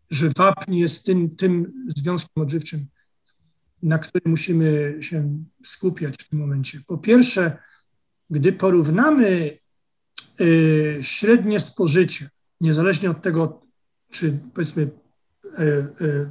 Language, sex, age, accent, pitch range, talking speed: Polish, male, 40-59, native, 150-185 Hz, 105 wpm